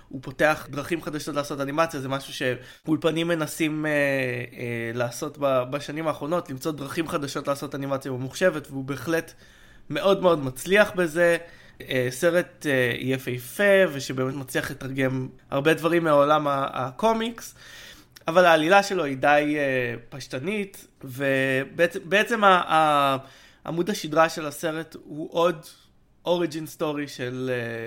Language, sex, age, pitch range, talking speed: Hebrew, male, 20-39, 135-165 Hz, 120 wpm